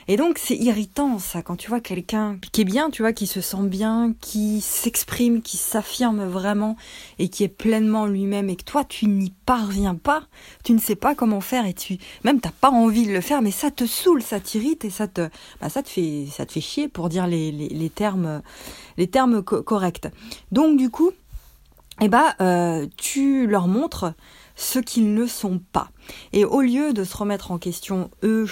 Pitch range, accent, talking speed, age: 180-235 Hz, French, 215 wpm, 20-39